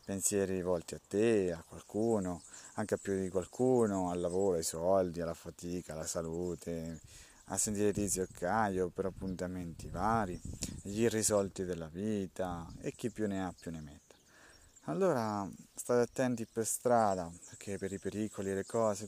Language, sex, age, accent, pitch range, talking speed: Italian, male, 30-49, native, 90-115 Hz, 160 wpm